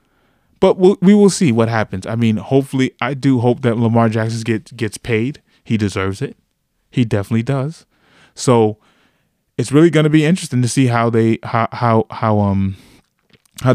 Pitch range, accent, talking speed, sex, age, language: 110-130 Hz, American, 185 wpm, male, 20-39, English